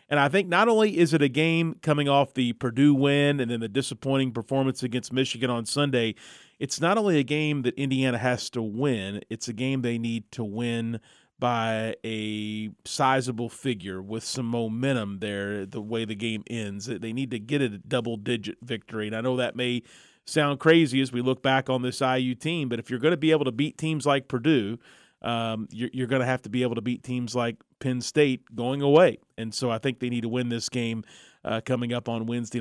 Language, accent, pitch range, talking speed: English, American, 115-135 Hz, 215 wpm